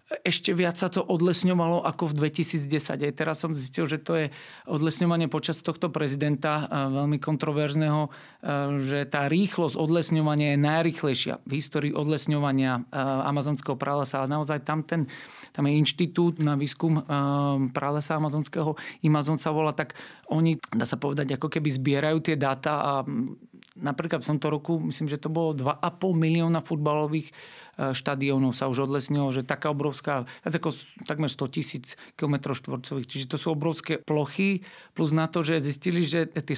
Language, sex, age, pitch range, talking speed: Slovak, male, 40-59, 140-160 Hz, 155 wpm